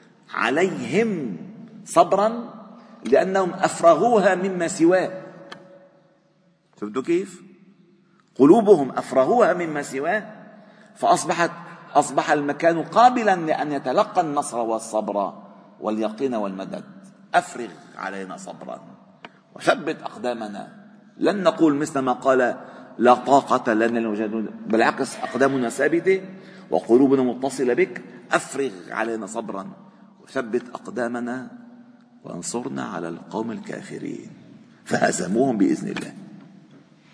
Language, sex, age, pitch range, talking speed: Arabic, male, 50-69, 120-195 Hz, 85 wpm